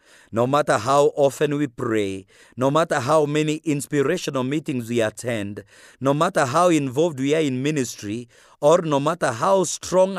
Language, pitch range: English, 125-160 Hz